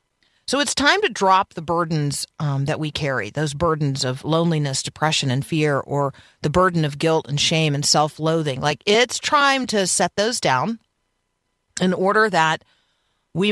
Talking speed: 170 wpm